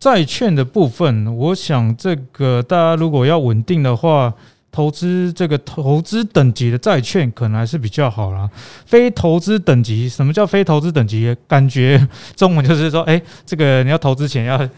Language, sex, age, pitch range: Chinese, male, 20-39, 125-180 Hz